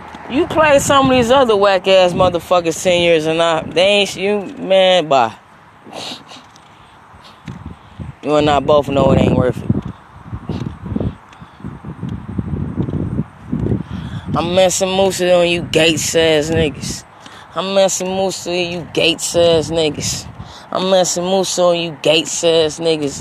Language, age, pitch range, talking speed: English, 10-29, 155-190 Hz, 125 wpm